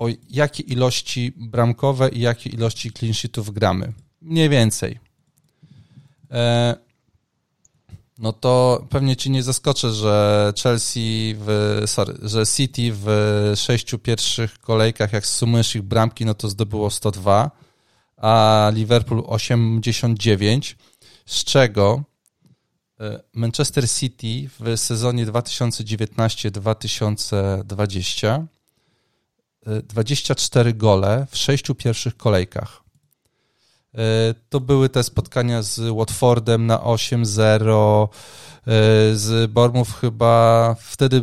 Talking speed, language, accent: 90 wpm, Polish, native